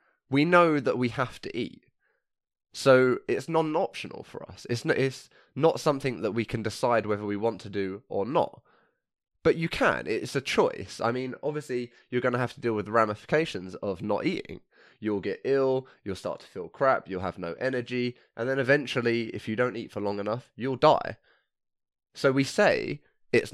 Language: English